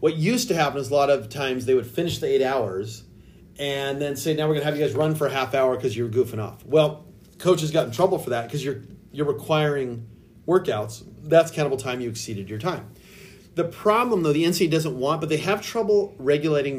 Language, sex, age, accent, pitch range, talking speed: English, male, 30-49, American, 130-170 Hz, 230 wpm